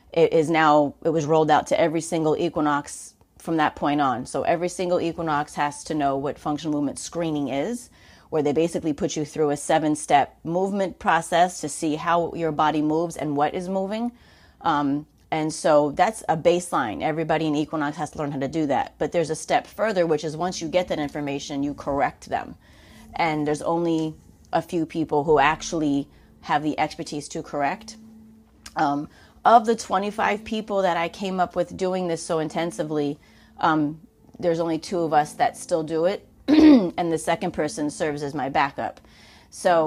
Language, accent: English, American